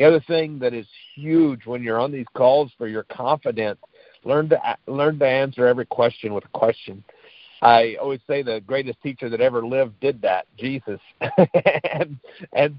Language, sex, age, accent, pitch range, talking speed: English, male, 50-69, American, 115-140 Hz, 180 wpm